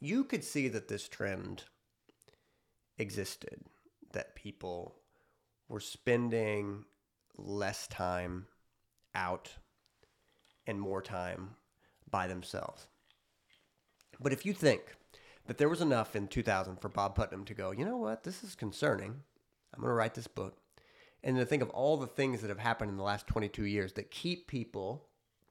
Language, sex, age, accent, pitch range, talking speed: English, male, 30-49, American, 100-125 Hz, 150 wpm